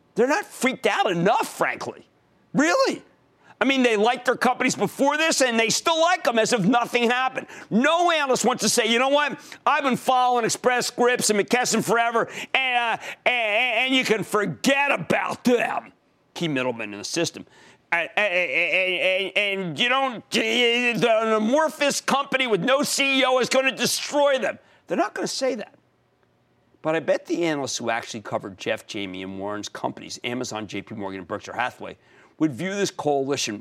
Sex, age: male, 50-69